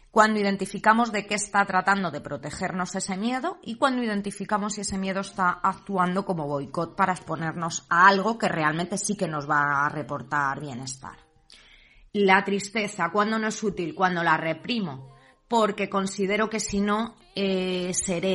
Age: 20-39